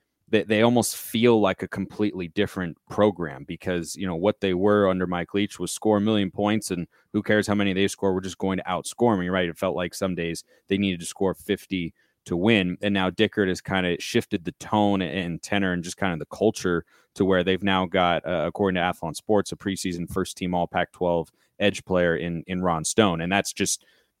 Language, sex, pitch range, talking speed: English, male, 90-105 Hz, 225 wpm